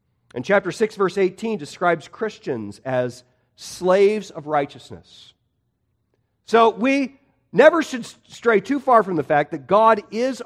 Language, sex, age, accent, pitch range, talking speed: English, male, 50-69, American, 125-205 Hz, 140 wpm